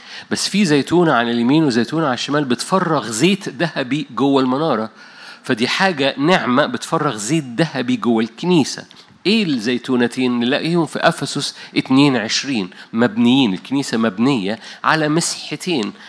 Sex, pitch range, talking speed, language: male, 120-160 Hz, 120 wpm, Arabic